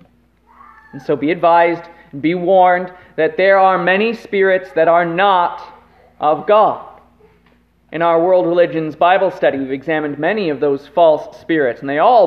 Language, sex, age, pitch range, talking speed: English, male, 30-49, 155-215 Hz, 155 wpm